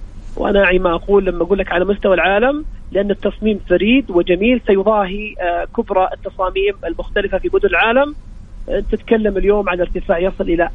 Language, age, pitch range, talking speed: Arabic, 30-49, 180-225 Hz, 155 wpm